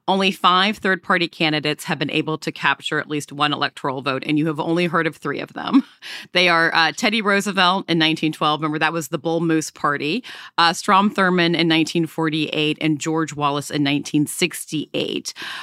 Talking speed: 180 wpm